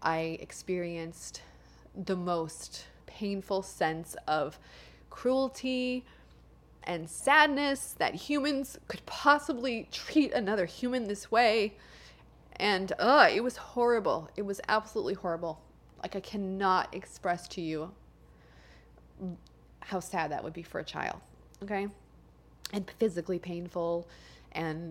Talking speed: 115 wpm